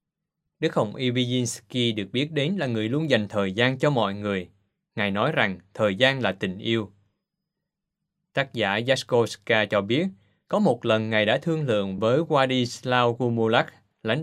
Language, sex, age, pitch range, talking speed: Vietnamese, male, 20-39, 110-150 Hz, 165 wpm